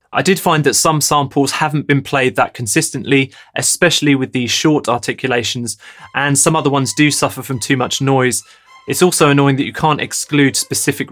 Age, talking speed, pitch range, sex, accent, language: 20-39, 185 wpm, 125-150 Hz, male, British, English